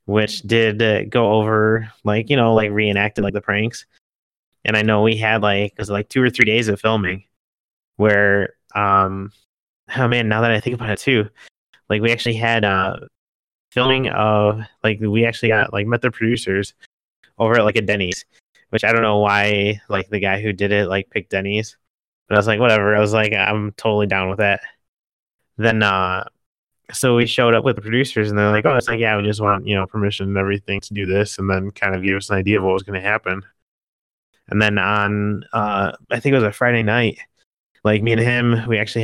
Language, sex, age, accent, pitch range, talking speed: English, male, 20-39, American, 100-110 Hz, 220 wpm